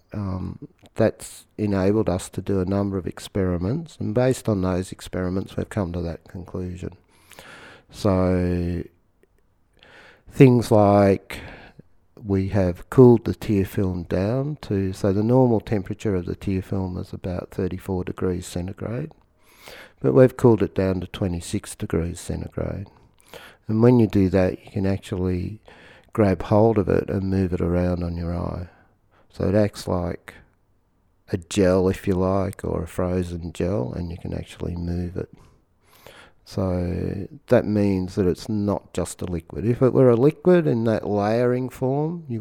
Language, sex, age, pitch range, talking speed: English, male, 50-69, 90-110 Hz, 155 wpm